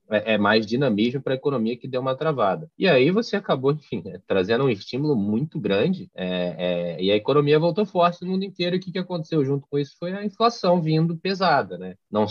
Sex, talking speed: male, 215 wpm